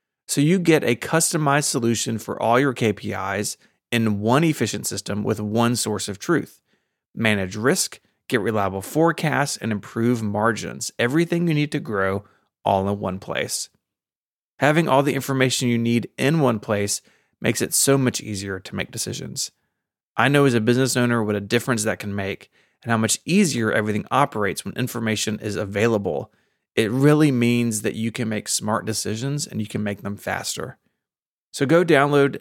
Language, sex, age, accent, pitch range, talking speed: English, male, 30-49, American, 110-140 Hz, 170 wpm